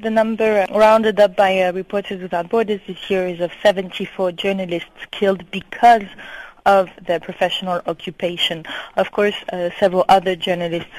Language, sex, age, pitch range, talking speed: English, female, 30-49, 180-215 Hz, 145 wpm